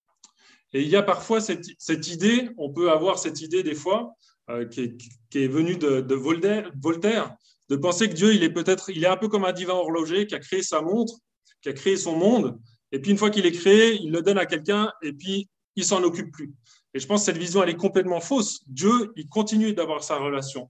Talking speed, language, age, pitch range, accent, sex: 245 wpm, French, 20-39, 150-205 Hz, French, male